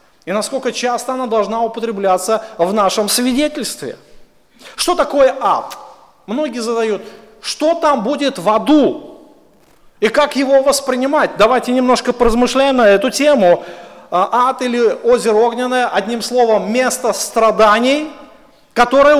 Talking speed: 120 wpm